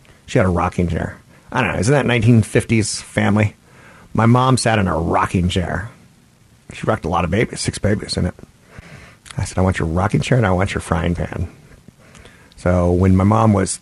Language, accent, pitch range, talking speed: English, American, 90-115 Hz, 205 wpm